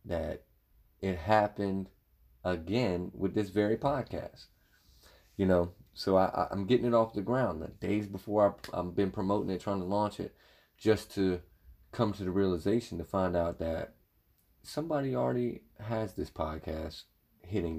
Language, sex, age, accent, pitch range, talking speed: English, male, 30-49, American, 85-110 Hz, 155 wpm